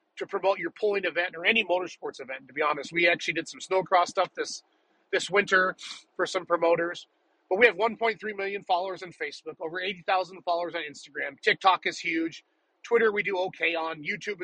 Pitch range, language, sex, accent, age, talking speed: 165-200 Hz, English, male, American, 30-49, 190 wpm